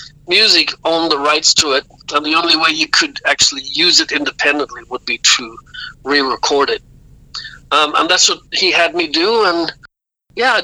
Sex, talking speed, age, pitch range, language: male, 180 wpm, 60-79, 150-190 Hz, English